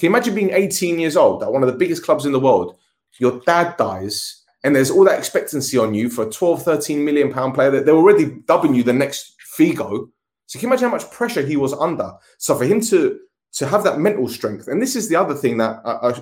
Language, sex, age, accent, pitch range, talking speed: Greek, male, 20-39, British, 120-165 Hz, 250 wpm